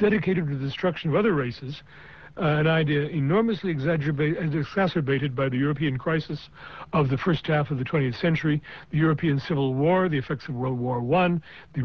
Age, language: 60-79, English